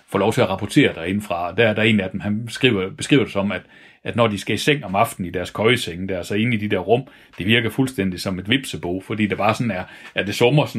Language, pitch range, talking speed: Danish, 95-125 Hz, 285 wpm